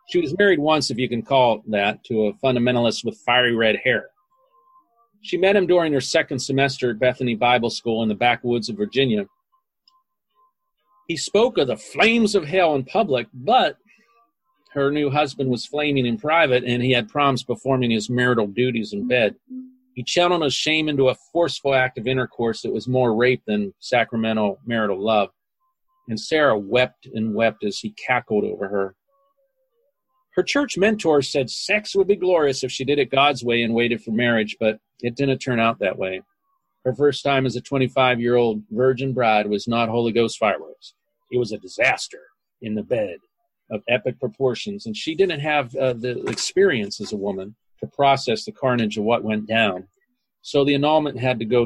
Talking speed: 185 wpm